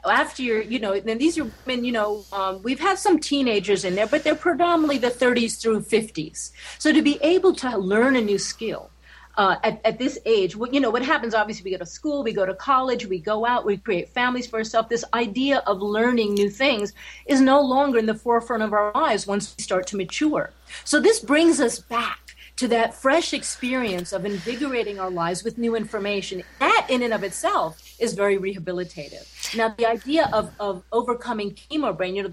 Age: 40-59